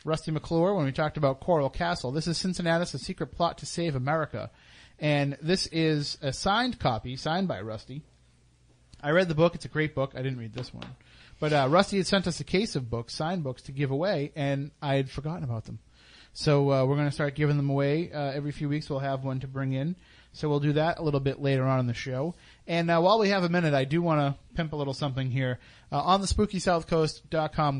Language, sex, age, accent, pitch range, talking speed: English, male, 30-49, American, 135-160 Hz, 240 wpm